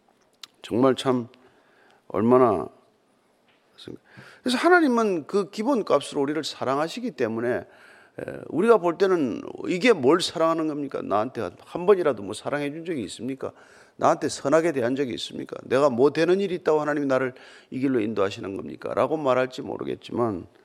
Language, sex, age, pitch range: Korean, male, 40-59, 140-205 Hz